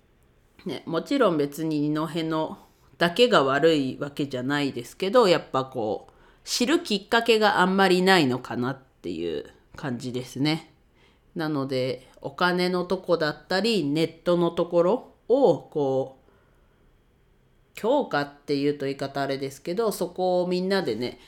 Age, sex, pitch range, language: 40-59, female, 135-170 Hz, Japanese